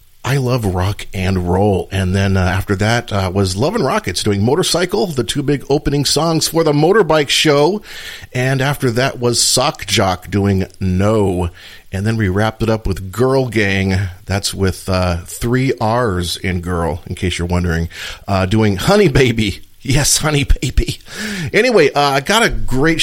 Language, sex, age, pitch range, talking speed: English, male, 40-59, 95-115 Hz, 175 wpm